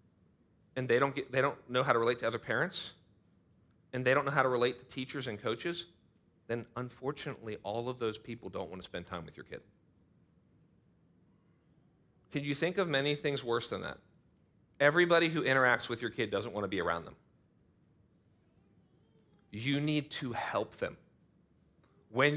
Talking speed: 175 wpm